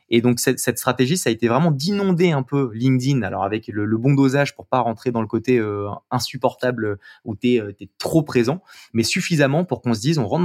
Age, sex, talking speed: 20-39, male, 230 wpm